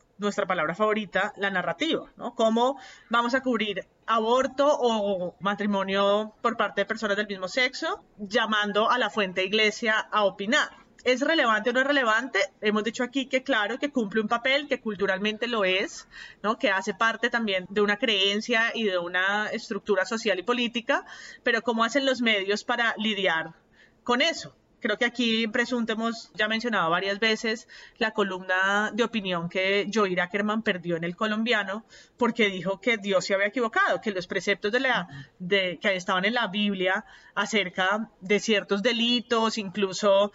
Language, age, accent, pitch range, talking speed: Spanish, 30-49, Colombian, 200-235 Hz, 170 wpm